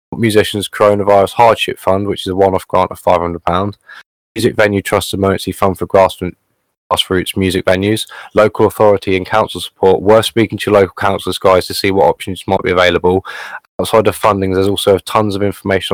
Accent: British